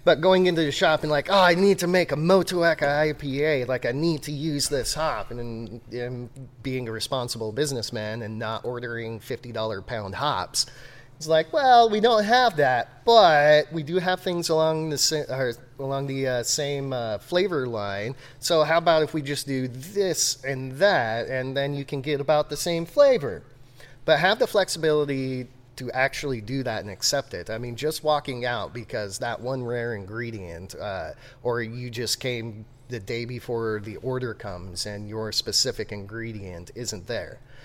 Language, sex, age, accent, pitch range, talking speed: English, male, 30-49, American, 120-160 Hz, 180 wpm